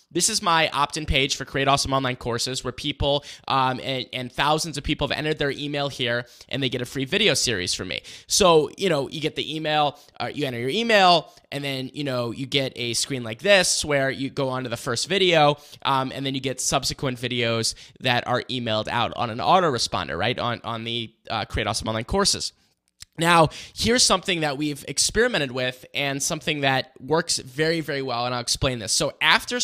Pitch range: 125-155 Hz